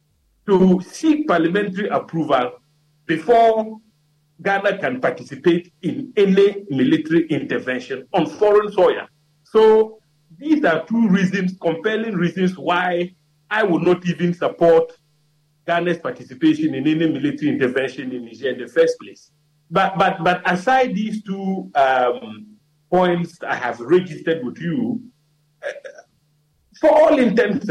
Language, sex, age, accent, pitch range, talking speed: English, male, 50-69, Nigerian, 150-215 Hz, 125 wpm